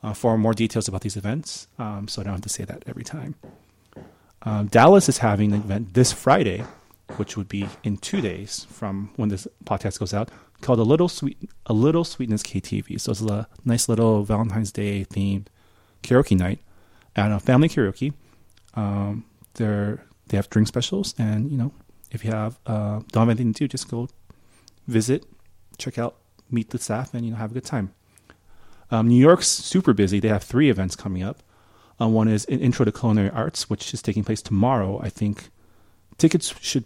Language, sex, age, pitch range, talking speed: English, male, 30-49, 100-115 Hz, 195 wpm